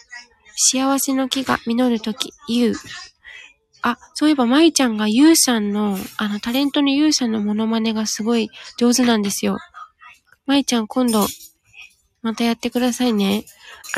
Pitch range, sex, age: 225-280 Hz, female, 20-39